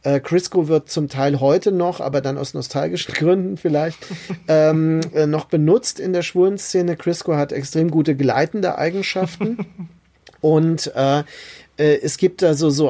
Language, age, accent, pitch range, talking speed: German, 40-59, German, 145-180 Hz, 145 wpm